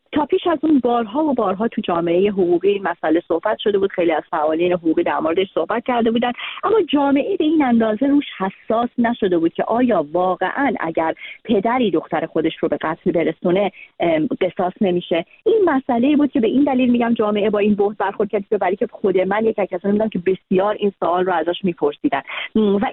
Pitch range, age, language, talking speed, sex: 180-240 Hz, 40-59, Persian, 185 wpm, female